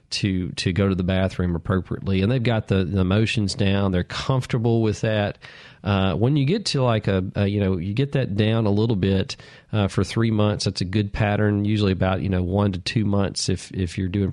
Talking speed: 230 wpm